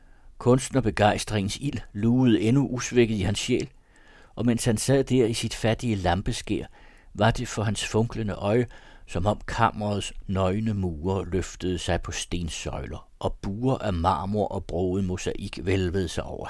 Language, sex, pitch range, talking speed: Danish, male, 85-110 Hz, 155 wpm